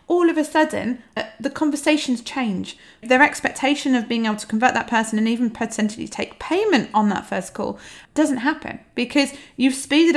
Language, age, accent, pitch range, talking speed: English, 30-49, British, 205-265 Hz, 175 wpm